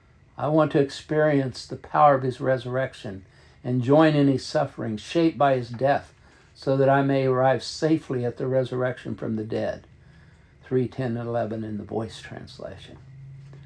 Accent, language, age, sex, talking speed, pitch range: American, English, 60-79, male, 165 wpm, 115-140 Hz